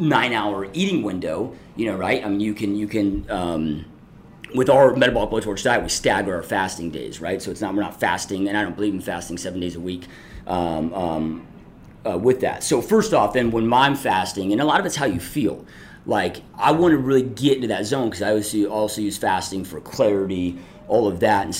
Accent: American